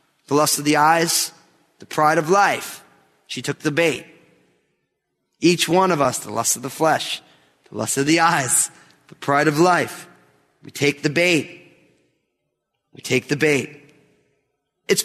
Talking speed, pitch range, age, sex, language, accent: 160 wpm, 140-185 Hz, 30-49, male, English, American